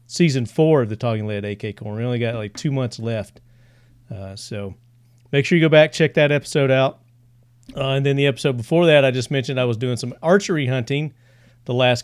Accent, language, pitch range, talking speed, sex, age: American, English, 120-140 Hz, 220 wpm, male, 40-59